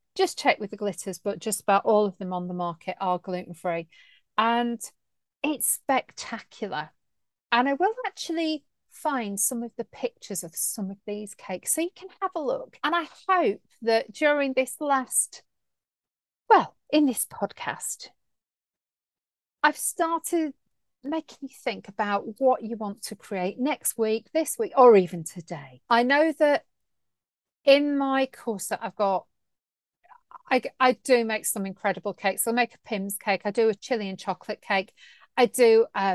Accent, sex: British, female